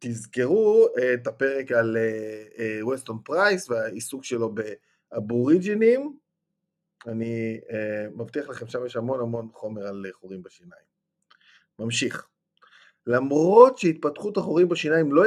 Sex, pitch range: male, 120-180 Hz